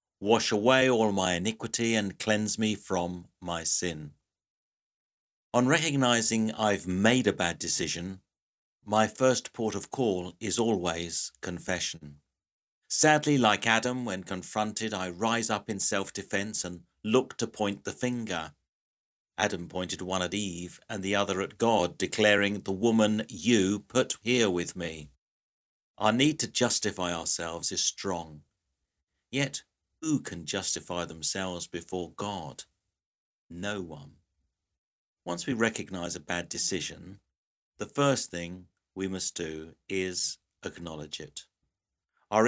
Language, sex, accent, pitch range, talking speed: English, male, British, 85-110 Hz, 130 wpm